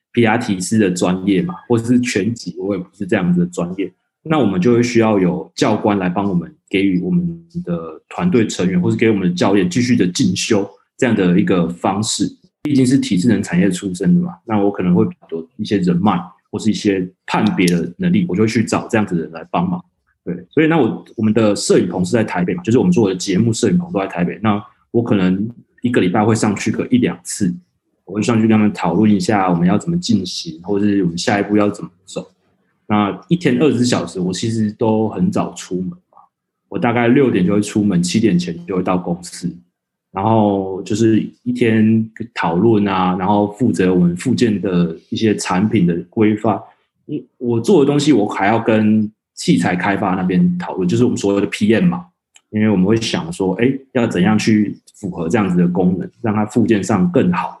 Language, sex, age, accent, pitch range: English, male, 20-39, Chinese, 95-120 Hz